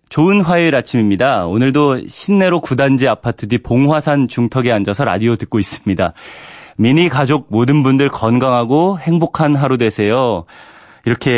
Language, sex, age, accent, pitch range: Korean, male, 30-49, native, 105-145 Hz